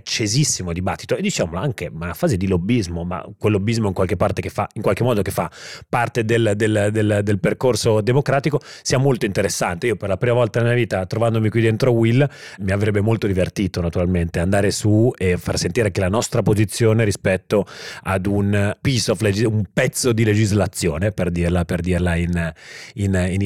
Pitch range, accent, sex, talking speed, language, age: 90-115 Hz, native, male, 195 wpm, Italian, 30-49